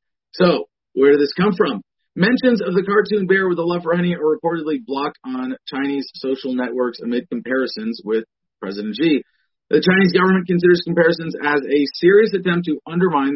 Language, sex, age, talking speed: English, male, 40-59, 170 wpm